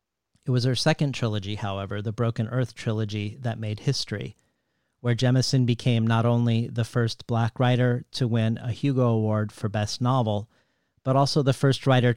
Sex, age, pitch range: male, 40-59, 110-125 Hz